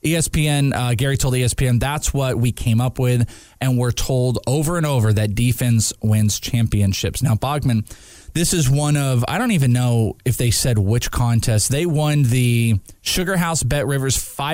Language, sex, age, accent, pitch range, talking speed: English, male, 20-39, American, 110-145 Hz, 180 wpm